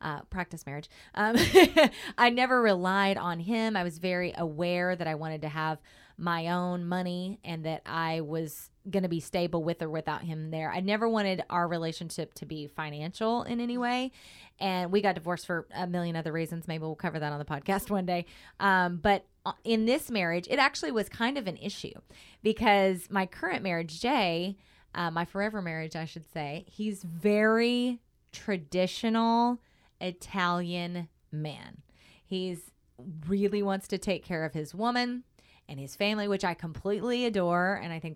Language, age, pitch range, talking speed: English, 20-39, 170-225 Hz, 175 wpm